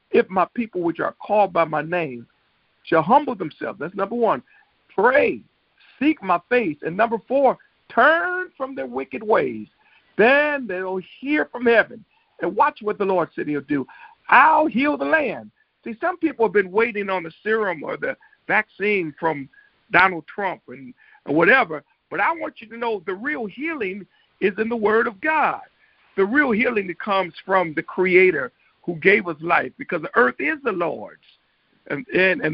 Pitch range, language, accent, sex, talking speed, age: 165-265 Hz, English, American, male, 180 wpm, 50-69